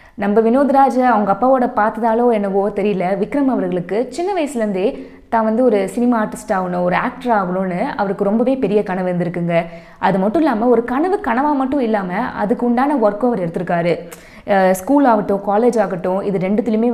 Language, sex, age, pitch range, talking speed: Tamil, female, 20-39, 185-250 Hz, 150 wpm